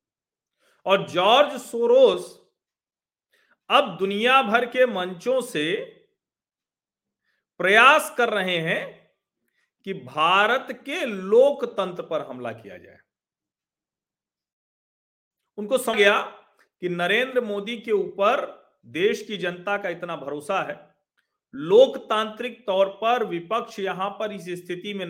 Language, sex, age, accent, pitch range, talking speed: Hindi, male, 40-59, native, 185-250 Hz, 110 wpm